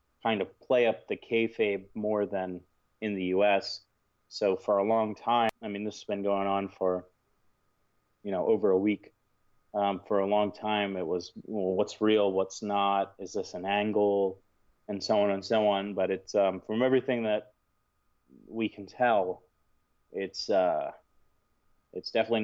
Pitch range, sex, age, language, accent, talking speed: 95-110 Hz, male, 30-49, English, American, 170 wpm